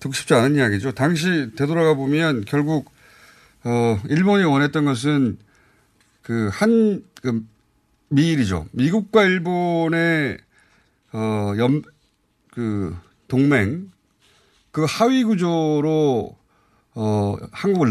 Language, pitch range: Korean, 110-155 Hz